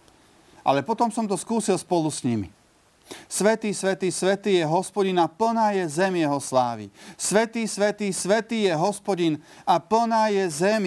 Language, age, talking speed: Slovak, 40-59, 155 wpm